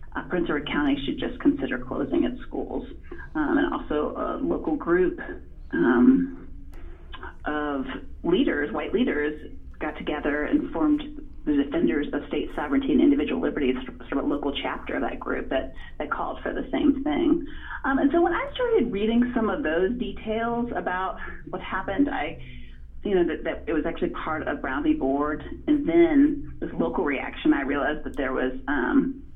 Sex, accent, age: female, American, 30-49